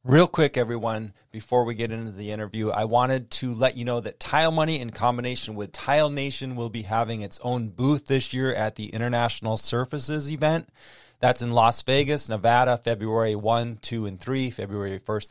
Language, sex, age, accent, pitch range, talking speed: English, male, 30-49, American, 110-130 Hz, 190 wpm